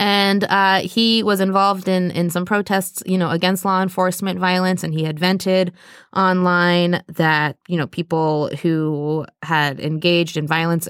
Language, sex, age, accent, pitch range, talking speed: English, female, 20-39, American, 160-195 Hz, 160 wpm